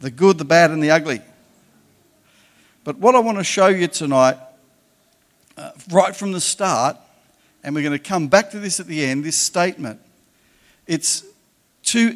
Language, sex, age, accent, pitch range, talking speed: English, male, 50-69, Australian, 160-200 Hz, 175 wpm